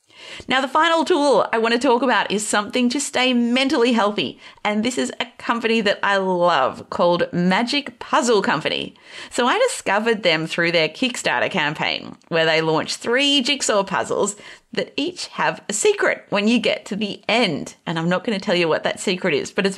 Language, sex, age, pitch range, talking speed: English, female, 30-49, 185-250 Hz, 195 wpm